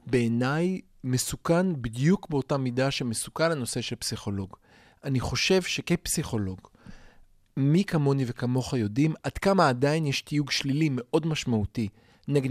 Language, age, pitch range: Hebrew, 40-59, 130-175 Hz